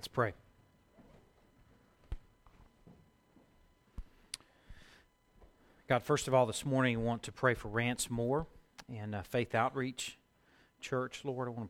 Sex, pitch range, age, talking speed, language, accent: male, 110-125 Hz, 40-59, 125 wpm, English, American